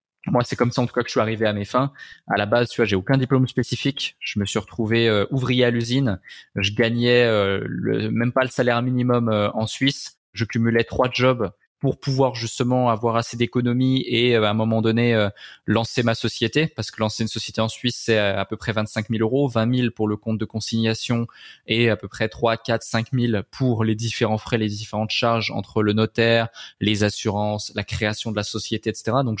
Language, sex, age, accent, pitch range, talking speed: French, male, 20-39, French, 110-125 Hz, 225 wpm